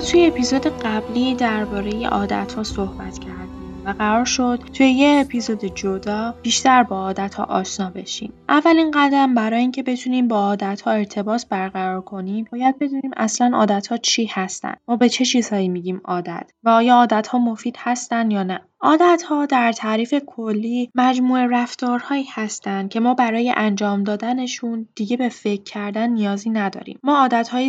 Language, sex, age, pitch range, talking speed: Persian, female, 10-29, 200-250 Hz, 160 wpm